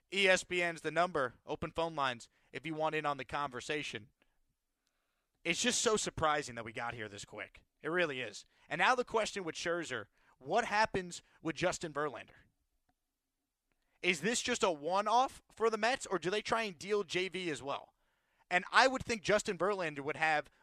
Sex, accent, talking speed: male, American, 180 wpm